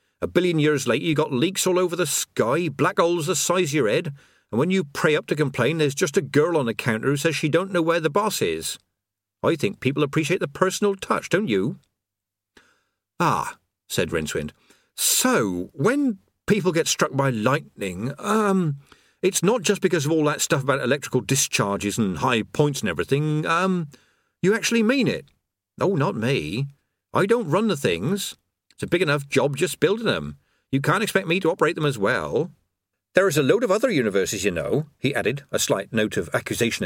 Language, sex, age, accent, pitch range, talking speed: English, male, 50-69, British, 130-185 Hz, 200 wpm